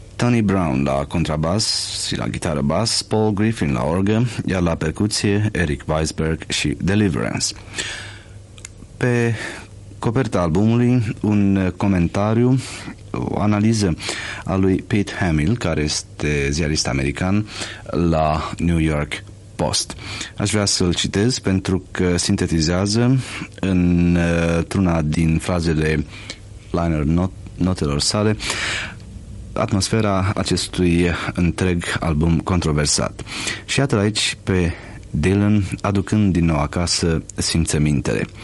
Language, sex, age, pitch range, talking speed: Romanian, male, 30-49, 85-105 Hz, 105 wpm